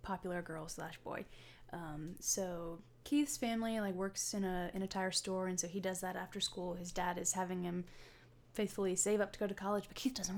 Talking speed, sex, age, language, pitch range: 220 wpm, female, 20-39, English, 175-205 Hz